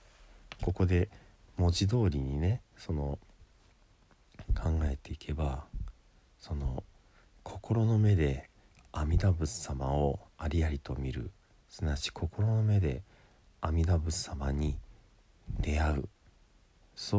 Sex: male